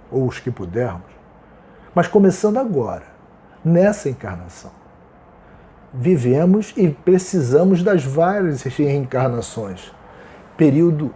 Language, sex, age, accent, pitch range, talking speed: Portuguese, male, 40-59, Brazilian, 125-175 Hz, 85 wpm